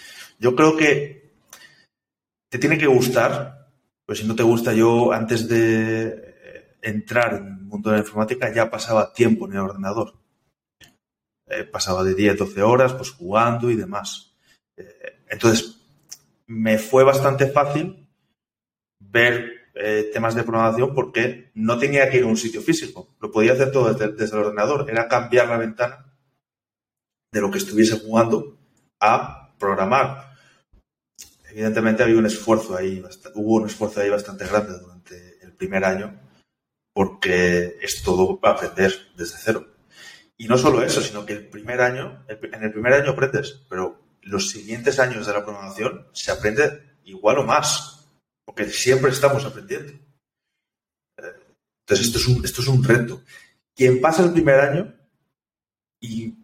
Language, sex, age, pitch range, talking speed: Spanish, male, 30-49, 105-130 Hz, 150 wpm